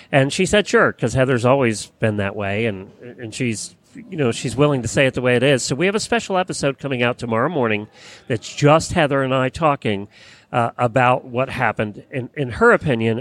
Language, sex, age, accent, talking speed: English, male, 40-59, American, 220 wpm